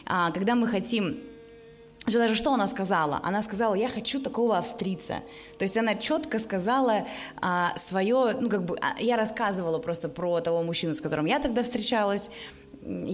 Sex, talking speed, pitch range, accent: female, 150 wpm, 170-240 Hz, native